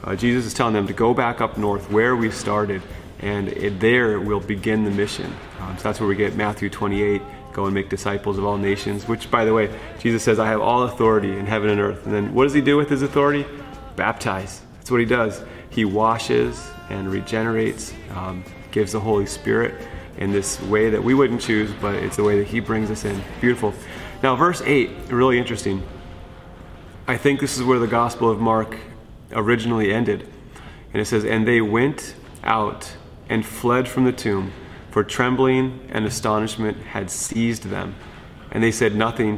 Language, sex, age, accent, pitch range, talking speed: English, male, 30-49, American, 100-120 Hz, 195 wpm